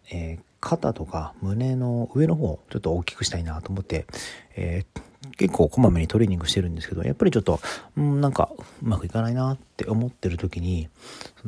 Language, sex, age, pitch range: Japanese, male, 40-59, 85-115 Hz